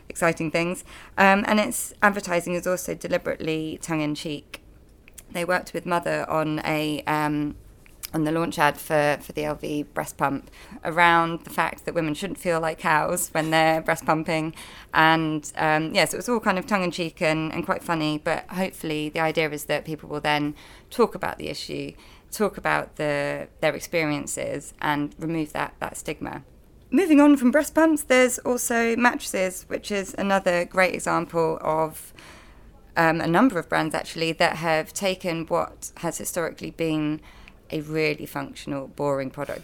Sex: female